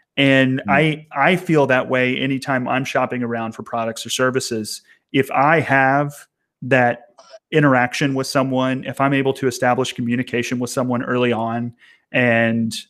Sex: male